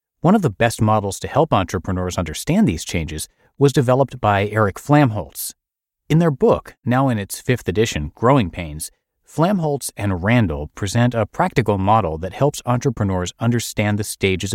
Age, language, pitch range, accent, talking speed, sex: 40-59, English, 90-125 Hz, American, 160 wpm, male